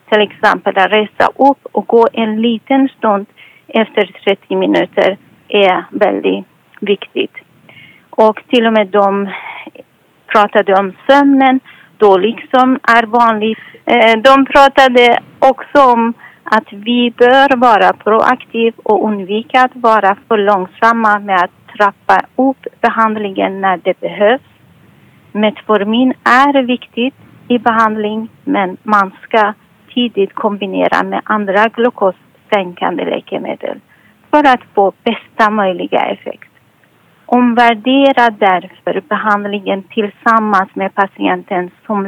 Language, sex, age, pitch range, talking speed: Swedish, female, 40-59, 200-245 Hz, 110 wpm